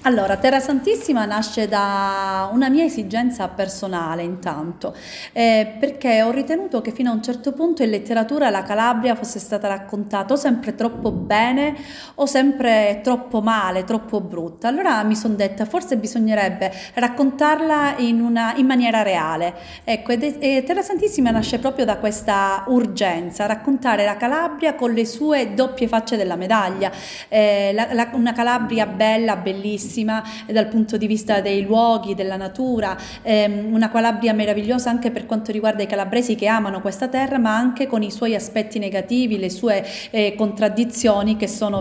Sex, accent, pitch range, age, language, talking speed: female, native, 205-245 Hz, 30-49, Italian, 160 wpm